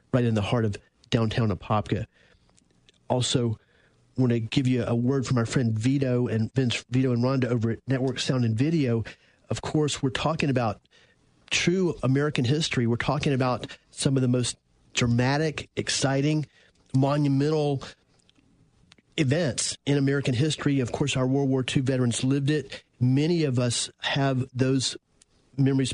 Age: 40-59